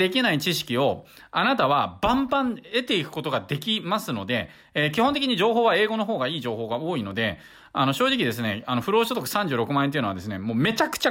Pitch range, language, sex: 125-210 Hz, Japanese, male